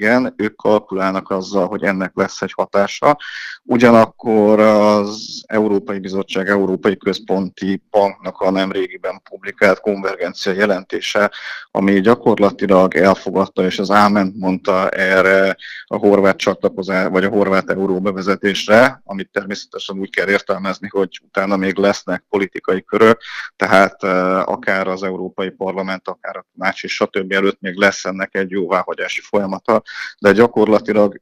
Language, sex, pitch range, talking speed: Hungarian, male, 95-100 Hz, 130 wpm